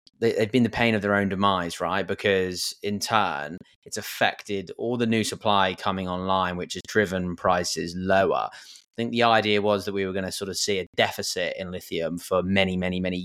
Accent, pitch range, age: British, 90-110 Hz, 20-39